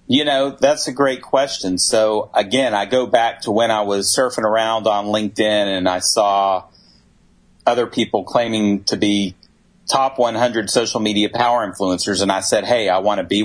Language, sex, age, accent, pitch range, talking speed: English, male, 40-59, American, 100-125 Hz, 185 wpm